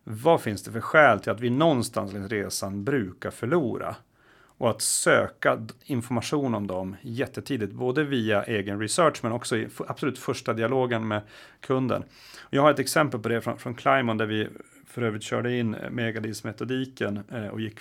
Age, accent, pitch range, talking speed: 30-49, native, 105-125 Hz, 175 wpm